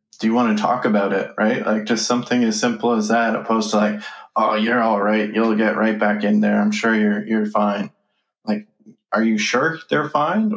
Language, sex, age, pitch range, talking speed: English, male, 20-39, 105-150 Hz, 220 wpm